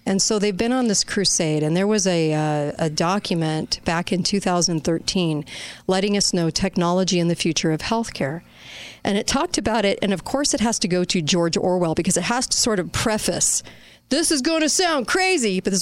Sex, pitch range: female, 175-215 Hz